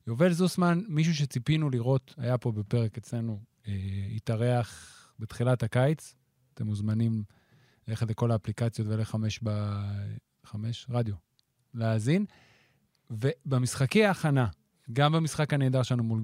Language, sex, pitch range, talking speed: Hebrew, male, 115-155 Hz, 105 wpm